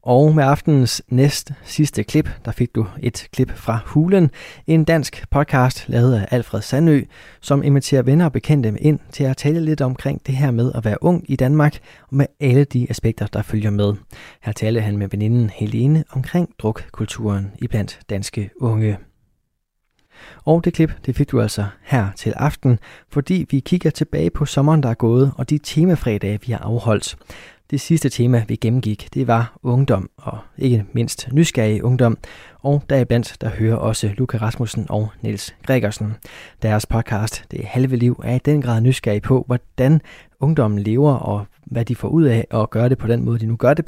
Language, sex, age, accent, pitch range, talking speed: Danish, male, 20-39, native, 110-140 Hz, 190 wpm